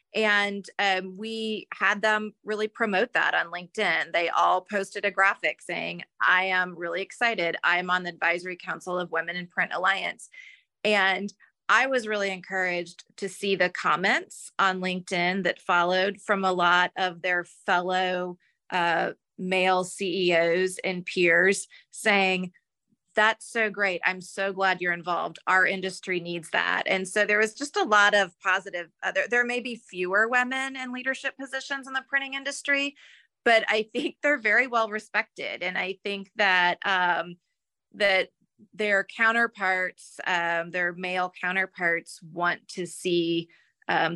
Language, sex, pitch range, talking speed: English, female, 180-215 Hz, 150 wpm